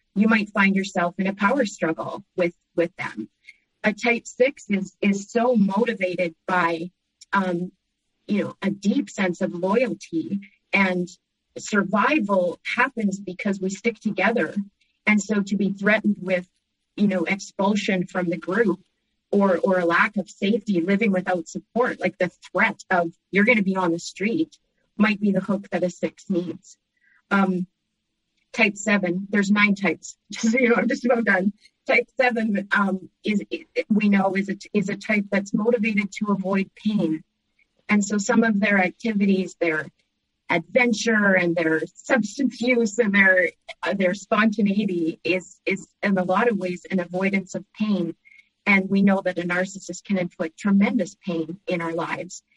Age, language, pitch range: 30-49, English, 180-215 Hz